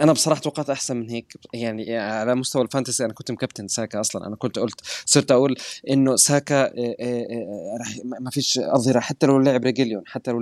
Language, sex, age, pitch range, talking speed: Arabic, male, 20-39, 110-130 Hz, 195 wpm